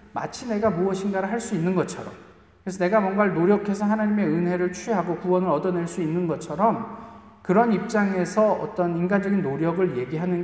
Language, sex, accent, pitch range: Korean, male, native, 170-215 Hz